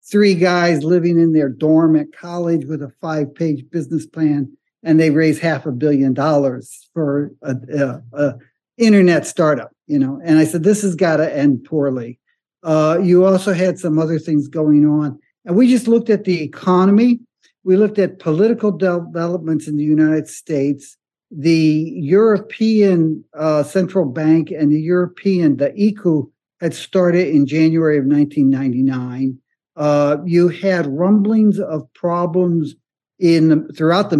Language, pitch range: English, 145-180 Hz